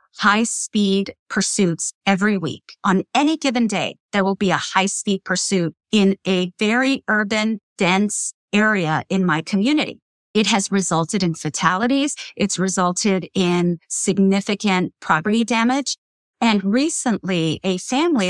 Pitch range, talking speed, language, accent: 175-225 Hz, 125 wpm, English, American